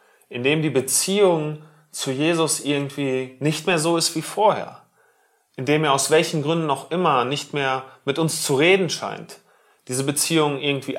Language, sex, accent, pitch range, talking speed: German, male, German, 125-165 Hz, 165 wpm